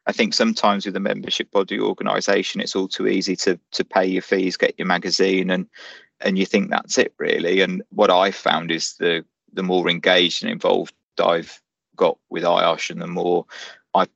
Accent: British